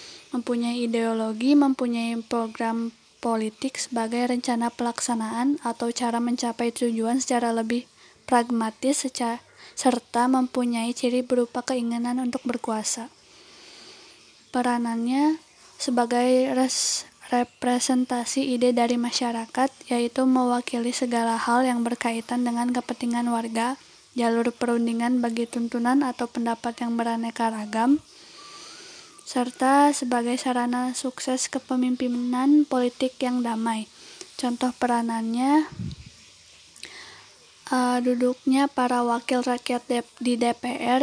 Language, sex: Indonesian, female